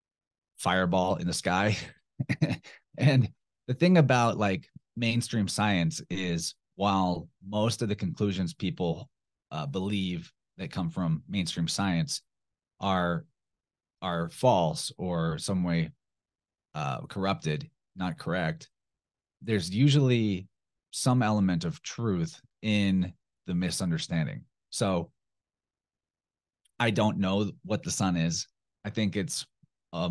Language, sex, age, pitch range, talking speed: English, male, 30-49, 90-110 Hz, 110 wpm